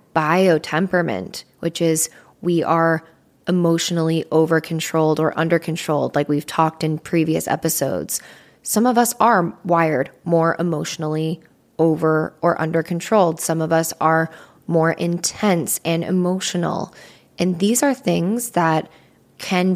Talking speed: 130 wpm